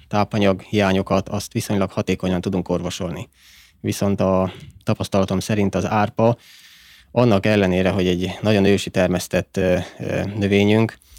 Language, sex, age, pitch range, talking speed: Hungarian, male, 20-39, 90-105 Hz, 115 wpm